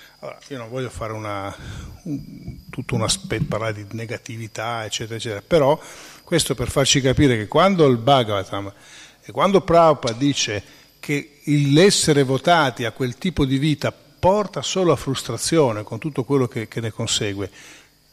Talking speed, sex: 155 wpm, male